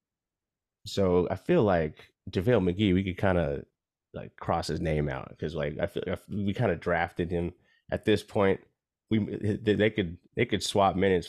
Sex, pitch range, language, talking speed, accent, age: male, 85-105 Hz, English, 185 wpm, American, 30-49